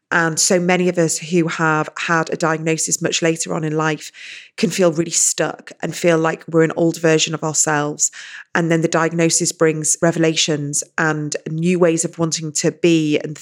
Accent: British